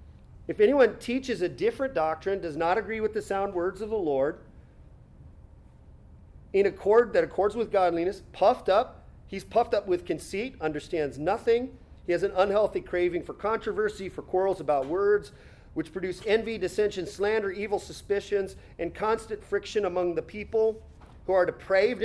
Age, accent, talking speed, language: 40-59, American, 160 wpm, English